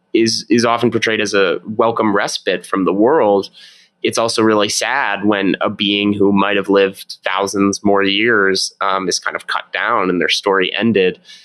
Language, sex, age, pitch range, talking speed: English, male, 20-39, 100-125 Hz, 185 wpm